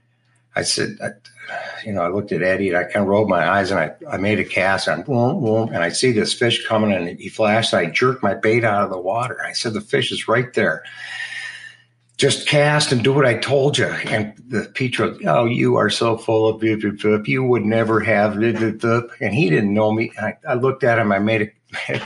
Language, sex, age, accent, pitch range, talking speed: English, male, 50-69, American, 100-120 Hz, 235 wpm